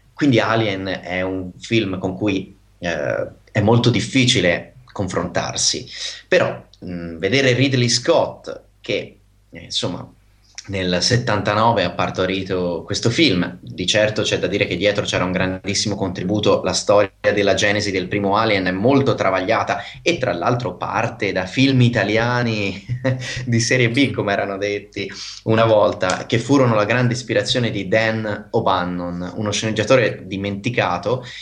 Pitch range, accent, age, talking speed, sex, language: 95-115 Hz, native, 30-49, 140 wpm, male, Italian